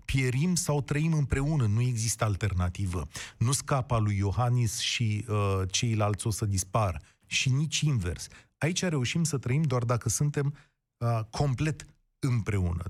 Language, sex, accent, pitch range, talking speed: Romanian, male, native, 105-150 Hz, 145 wpm